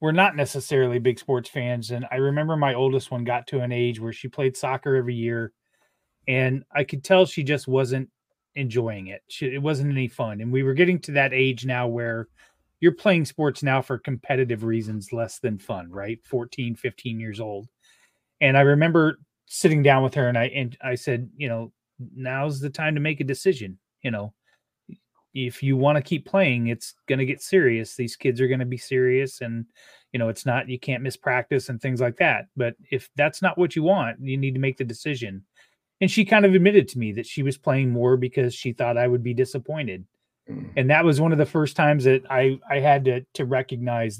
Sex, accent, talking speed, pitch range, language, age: male, American, 215 wpm, 120-145 Hz, English, 30-49